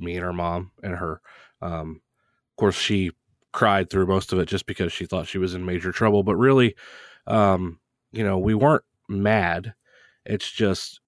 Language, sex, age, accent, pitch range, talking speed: English, male, 20-39, American, 90-110 Hz, 185 wpm